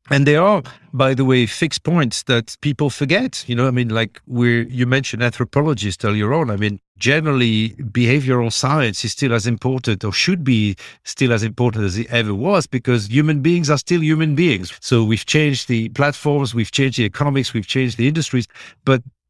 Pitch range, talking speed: 110-135 Hz, 200 wpm